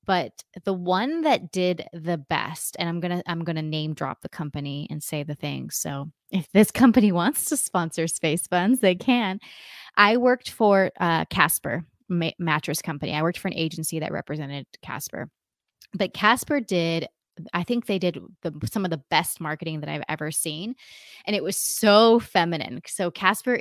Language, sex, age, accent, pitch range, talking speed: English, female, 20-39, American, 160-205 Hz, 180 wpm